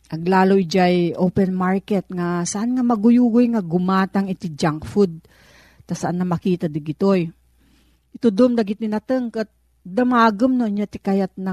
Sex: female